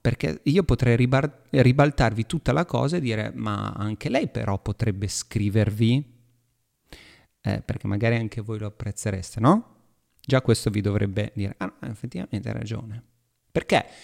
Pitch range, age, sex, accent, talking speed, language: 110-140 Hz, 30-49, male, native, 145 wpm, Italian